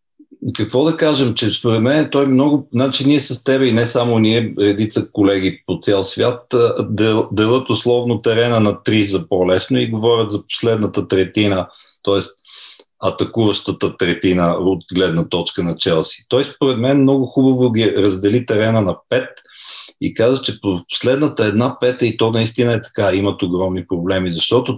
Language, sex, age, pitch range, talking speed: Bulgarian, male, 40-59, 95-130 Hz, 165 wpm